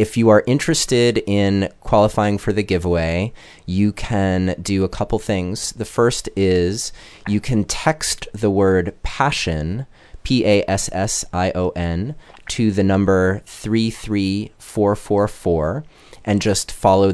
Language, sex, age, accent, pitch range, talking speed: English, male, 30-49, American, 90-105 Hz, 110 wpm